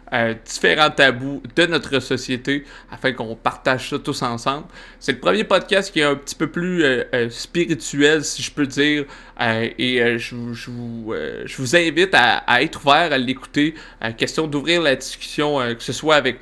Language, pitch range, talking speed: French, 125-145 Hz, 190 wpm